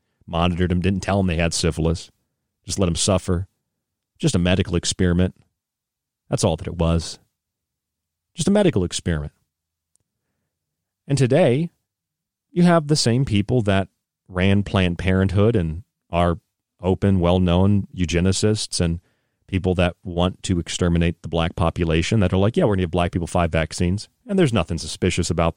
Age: 40-59